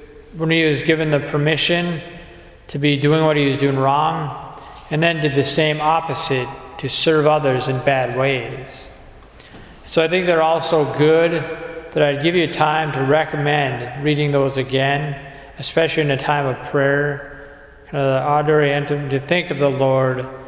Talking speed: 170 wpm